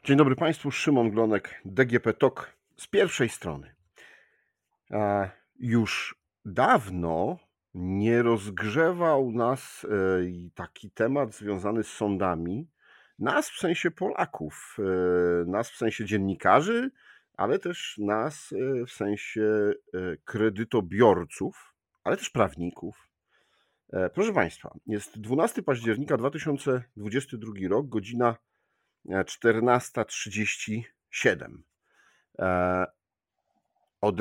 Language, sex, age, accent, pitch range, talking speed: Polish, male, 50-69, native, 95-135 Hz, 80 wpm